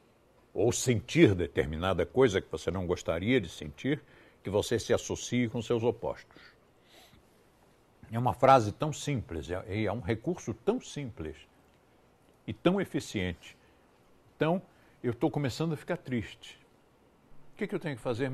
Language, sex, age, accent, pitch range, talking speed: Portuguese, male, 60-79, Brazilian, 110-175 Hz, 150 wpm